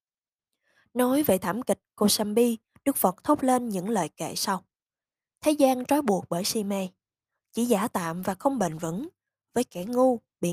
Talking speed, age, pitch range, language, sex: 180 wpm, 20-39, 185-250 Hz, Vietnamese, female